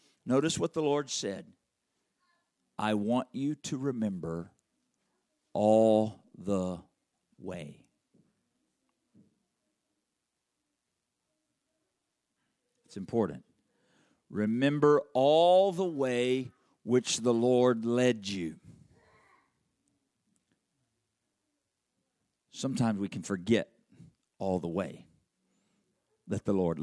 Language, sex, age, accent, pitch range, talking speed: English, male, 50-69, American, 105-175 Hz, 75 wpm